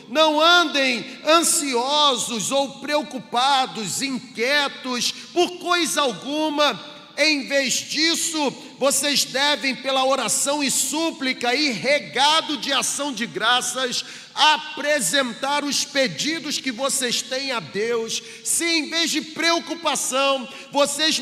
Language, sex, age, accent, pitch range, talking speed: Portuguese, male, 40-59, Brazilian, 250-295 Hz, 105 wpm